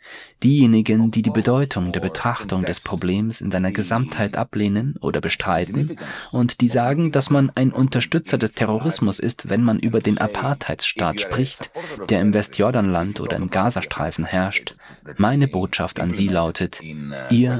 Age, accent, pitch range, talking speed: 30-49, German, 95-125 Hz, 145 wpm